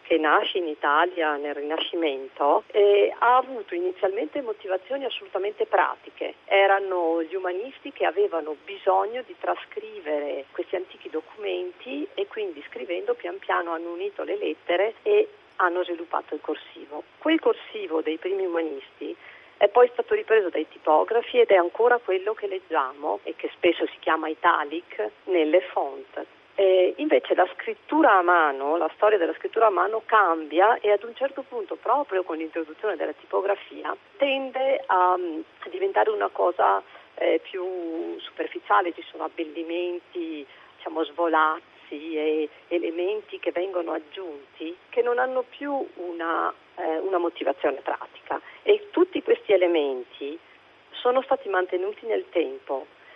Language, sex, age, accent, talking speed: Italian, female, 40-59, native, 140 wpm